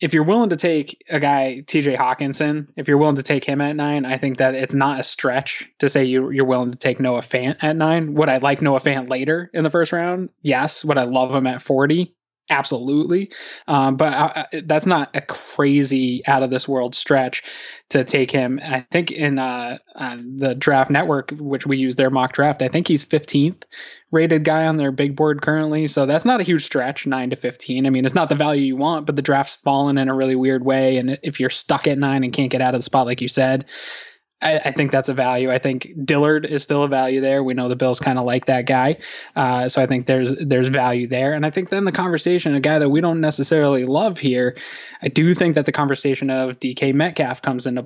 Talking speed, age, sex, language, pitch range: 235 wpm, 20-39, male, English, 130-155 Hz